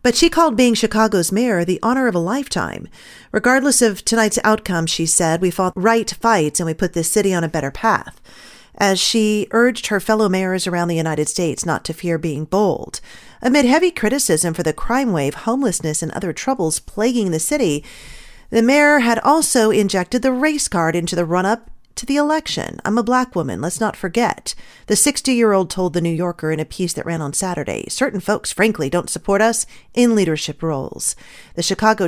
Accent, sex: American, female